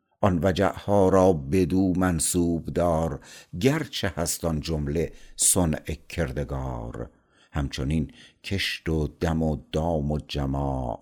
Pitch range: 75-100 Hz